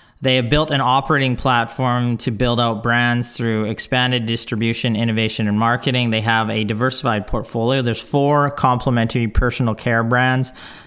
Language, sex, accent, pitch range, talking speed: English, male, American, 110-135 Hz, 150 wpm